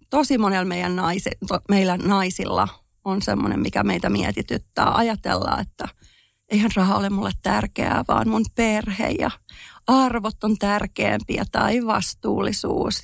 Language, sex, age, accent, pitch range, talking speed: Finnish, female, 40-59, native, 180-225 Hz, 130 wpm